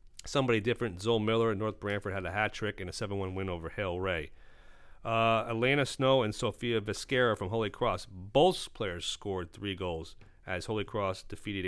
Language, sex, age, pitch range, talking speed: English, male, 40-59, 95-115 Hz, 180 wpm